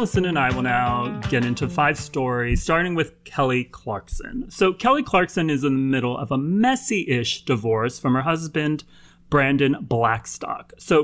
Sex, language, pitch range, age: male, English, 120-160 Hz, 30-49